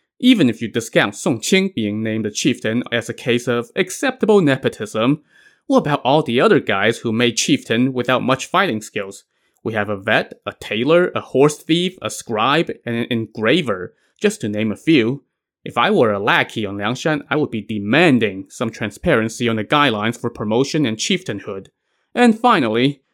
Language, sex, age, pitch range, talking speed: English, male, 20-39, 115-155 Hz, 180 wpm